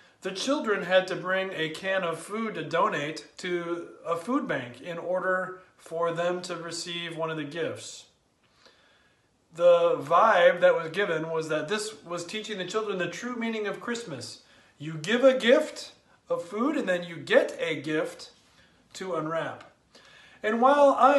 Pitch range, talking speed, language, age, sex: 160-215 Hz, 165 wpm, English, 30-49, male